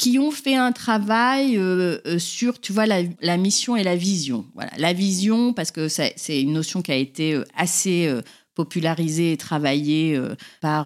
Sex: female